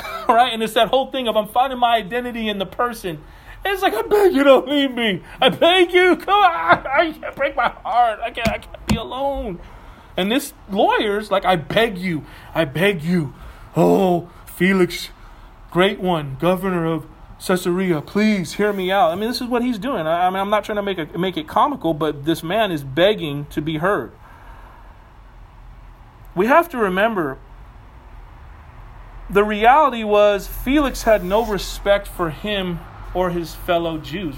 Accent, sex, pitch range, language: American, male, 170-245 Hz, English